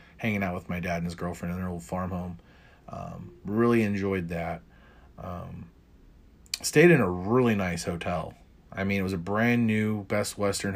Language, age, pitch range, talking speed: English, 30-49, 90-105 Hz, 185 wpm